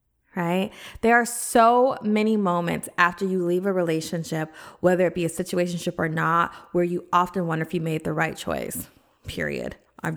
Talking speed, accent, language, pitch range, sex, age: 175 wpm, American, English, 170-205 Hz, female, 20-39